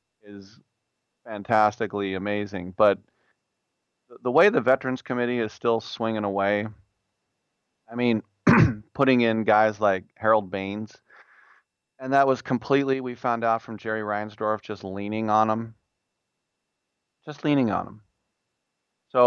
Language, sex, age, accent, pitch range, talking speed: English, male, 30-49, American, 100-120 Hz, 125 wpm